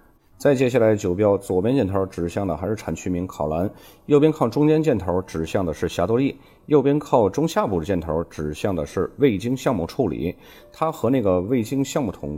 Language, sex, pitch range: Chinese, male, 85-120 Hz